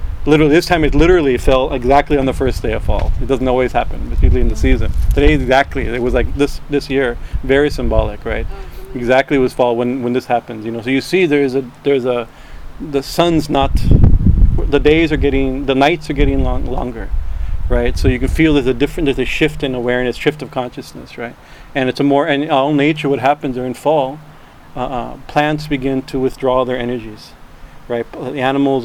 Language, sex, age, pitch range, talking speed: English, male, 40-59, 120-140 Hz, 210 wpm